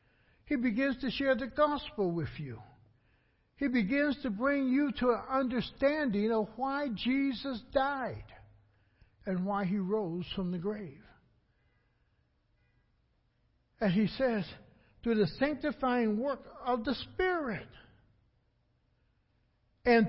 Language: English